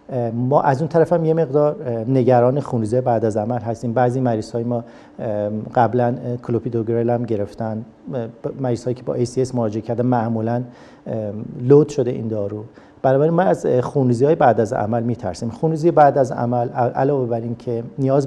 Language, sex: Persian, male